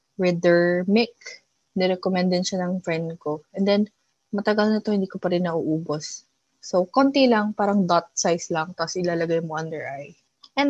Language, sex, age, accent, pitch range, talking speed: English, female, 20-39, Filipino, 170-210 Hz, 175 wpm